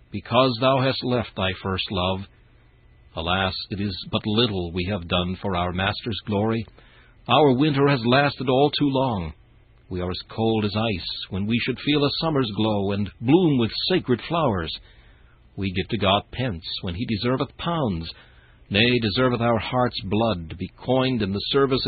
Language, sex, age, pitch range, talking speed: English, male, 60-79, 90-125 Hz, 175 wpm